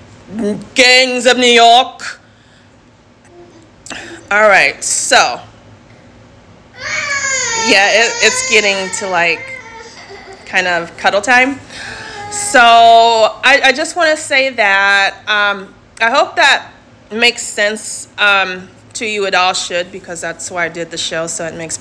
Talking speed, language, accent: 125 wpm, English, American